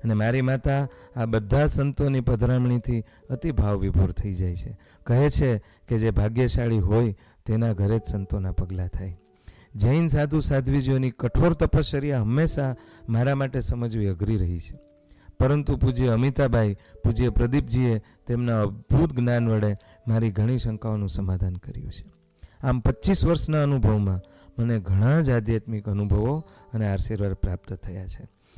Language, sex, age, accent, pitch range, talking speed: Gujarati, male, 40-59, native, 105-140 Hz, 130 wpm